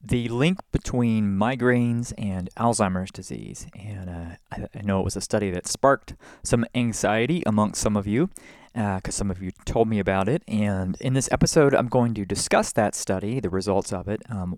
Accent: American